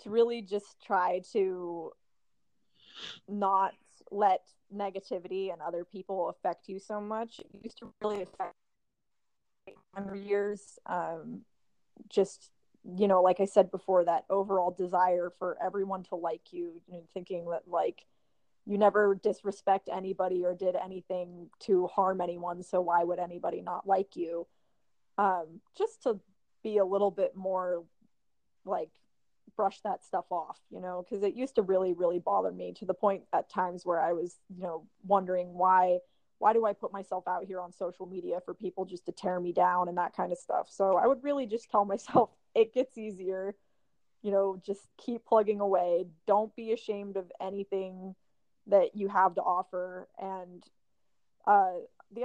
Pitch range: 180-205 Hz